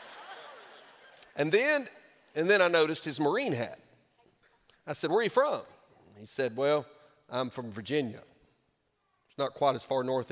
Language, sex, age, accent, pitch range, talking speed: English, male, 40-59, American, 110-145 Hz, 155 wpm